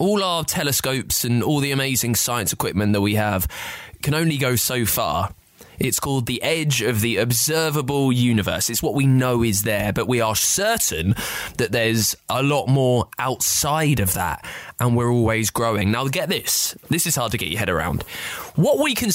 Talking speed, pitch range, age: 190 wpm, 115-150 Hz, 20-39